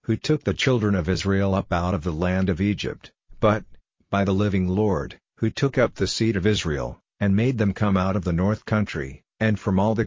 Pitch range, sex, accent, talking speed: 90-105 Hz, male, American, 225 wpm